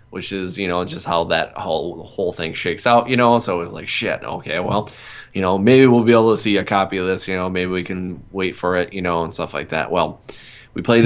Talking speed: 270 wpm